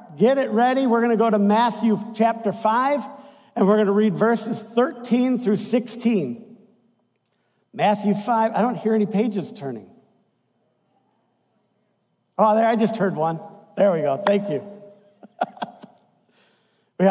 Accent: American